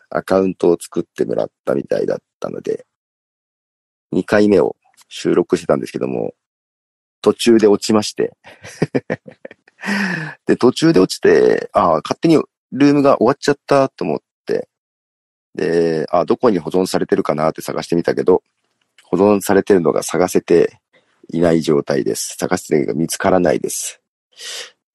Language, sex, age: Japanese, male, 40-59